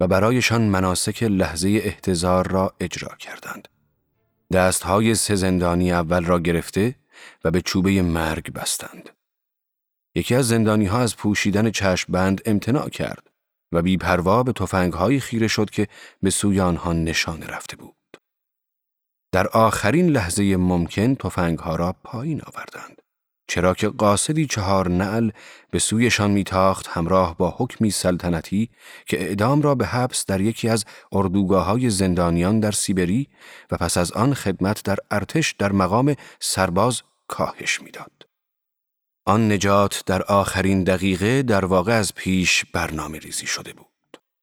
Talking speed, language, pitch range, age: 135 wpm, Persian, 90-110 Hz, 30-49